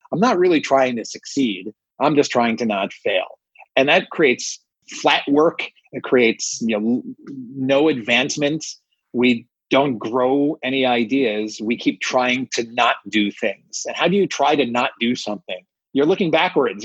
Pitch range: 120-180 Hz